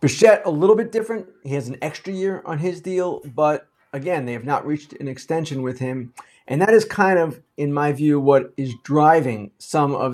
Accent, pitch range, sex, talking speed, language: American, 130-180 Hz, male, 215 wpm, English